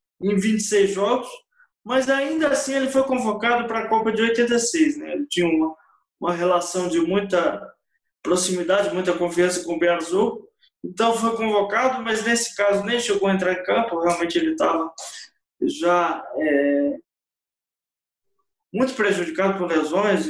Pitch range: 190-255 Hz